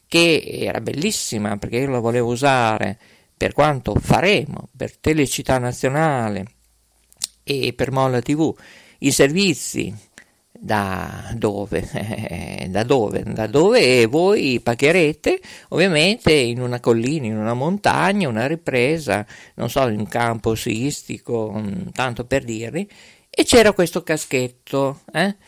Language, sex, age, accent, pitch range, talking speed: Italian, male, 50-69, native, 120-175 Hz, 120 wpm